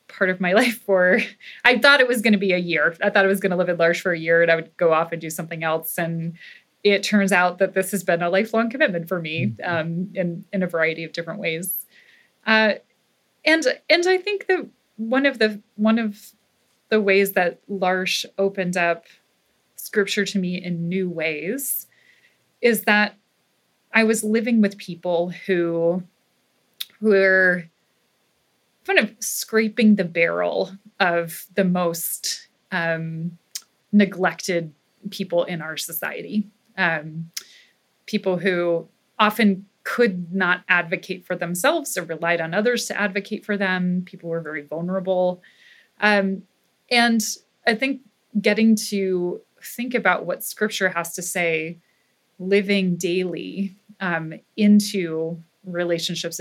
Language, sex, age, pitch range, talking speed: English, female, 20-39, 170-215 Hz, 150 wpm